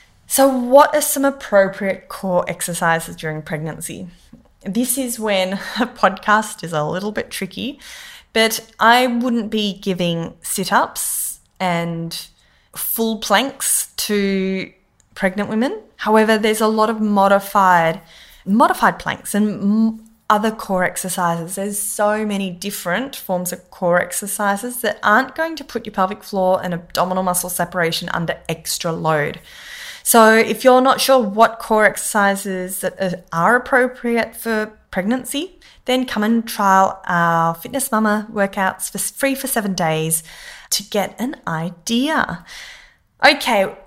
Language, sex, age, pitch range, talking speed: English, female, 10-29, 185-245 Hz, 135 wpm